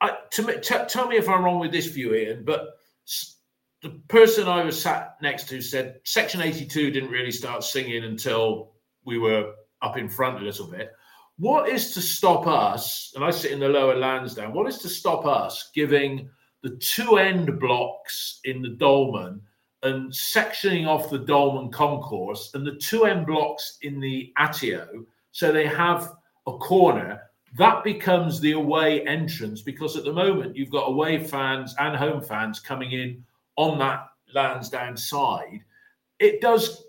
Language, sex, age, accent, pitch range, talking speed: English, male, 50-69, British, 130-170 Hz, 170 wpm